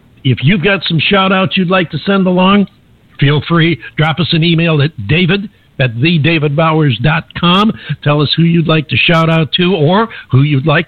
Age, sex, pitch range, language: 60-79, male, 140-180 Hz, English